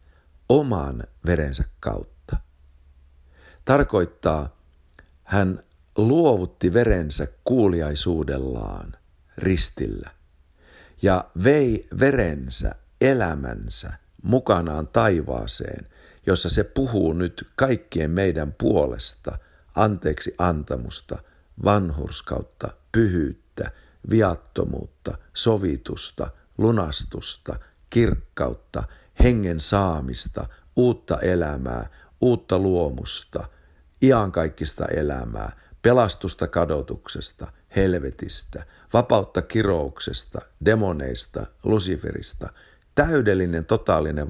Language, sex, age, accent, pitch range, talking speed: Finnish, male, 50-69, native, 70-95 Hz, 65 wpm